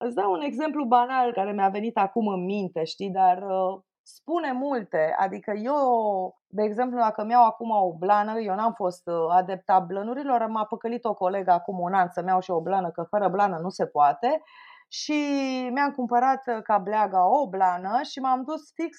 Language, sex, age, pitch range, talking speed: Romanian, female, 20-39, 200-265 Hz, 185 wpm